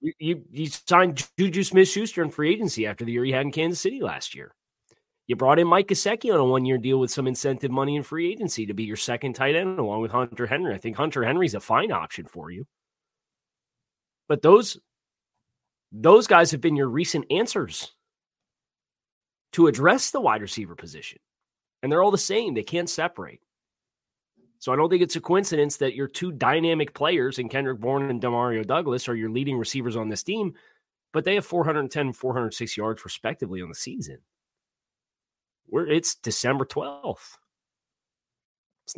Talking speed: 180 wpm